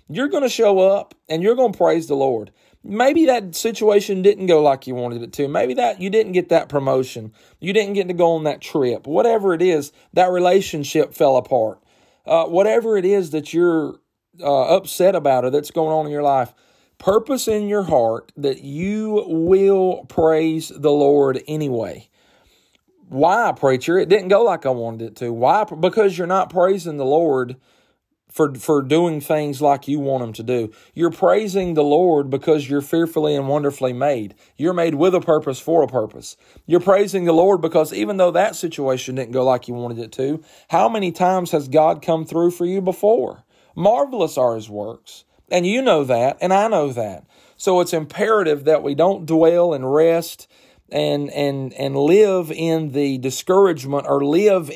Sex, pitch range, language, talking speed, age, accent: male, 140-185 Hz, English, 190 wpm, 40-59, American